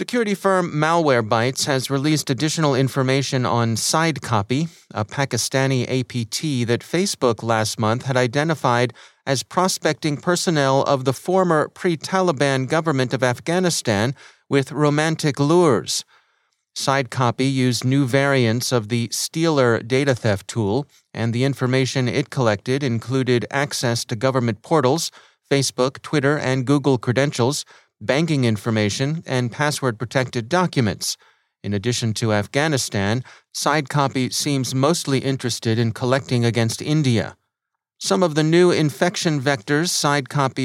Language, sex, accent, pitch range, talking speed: English, male, American, 120-150 Hz, 120 wpm